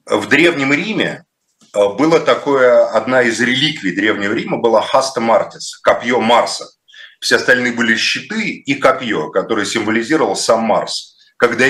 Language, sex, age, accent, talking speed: Russian, male, 30-49, native, 135 wpm